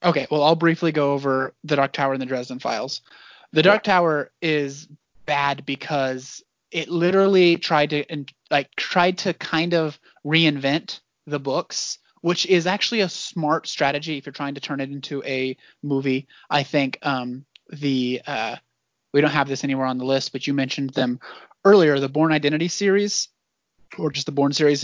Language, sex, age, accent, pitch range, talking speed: English, male, 30-49, American, 135-165 Hz, 175 wpm